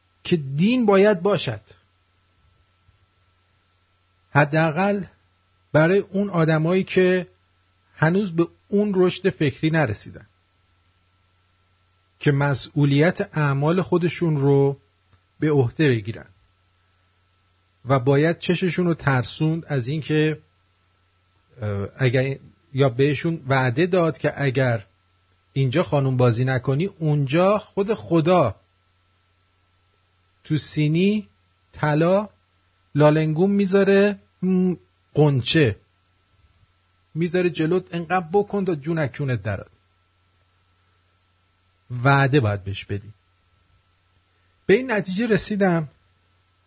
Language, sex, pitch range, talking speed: English, male, 95-155 Hz, 85 wpm